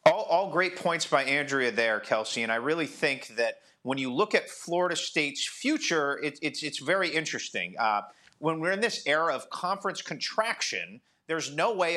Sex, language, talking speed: male, English, 185 wpm